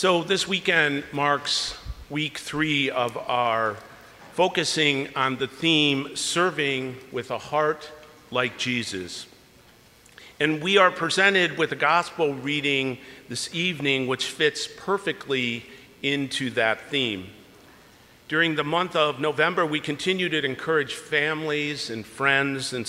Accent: American